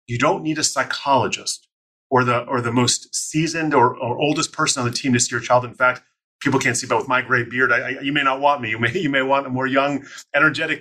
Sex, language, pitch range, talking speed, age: male, English, 125-150 Hz, 255 wpm, 30-49